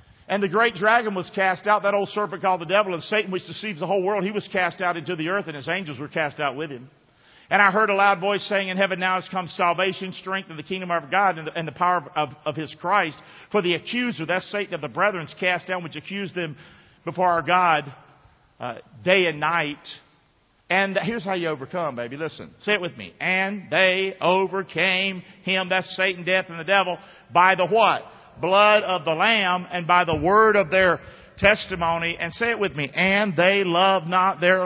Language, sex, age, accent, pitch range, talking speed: English, male, 50-69, American, 170-205 Hz, 220 wpm